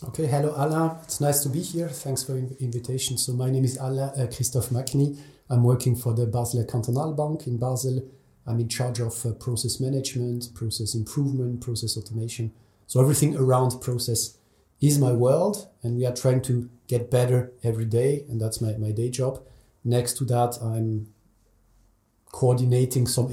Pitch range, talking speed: 115-135 Hz, 170 wpm